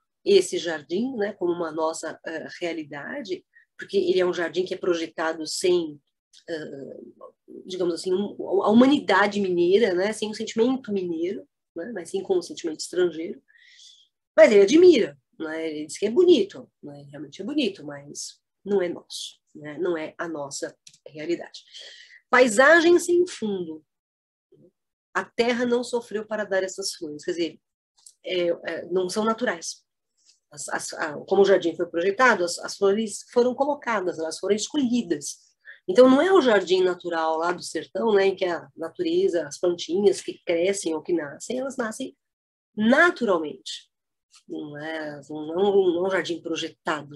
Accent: Brazilian